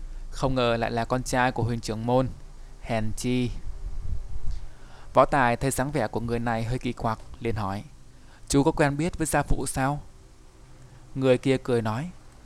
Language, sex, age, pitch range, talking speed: Vietnamese, male, 20-39, 110-135 Hz, 180 wpm